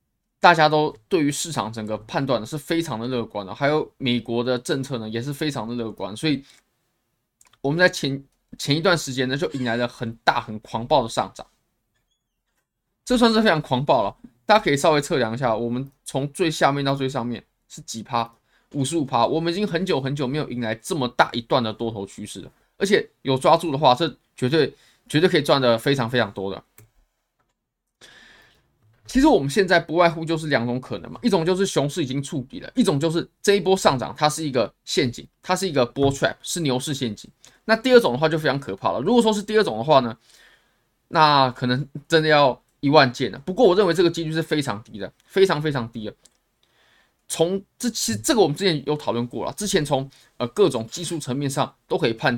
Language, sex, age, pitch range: Chinese, male, 20-39, 120-165 Hz